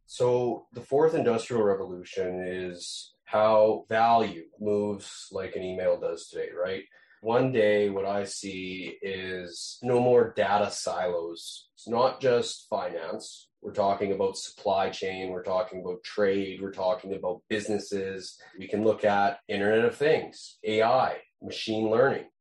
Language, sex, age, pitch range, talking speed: English, male, 30-49, 100-125 Hz, 140 wpm